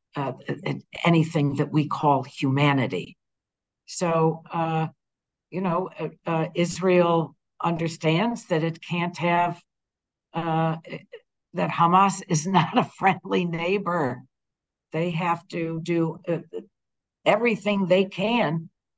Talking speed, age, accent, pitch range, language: 110 wpm, 60-79, American, 160-190 Hz, English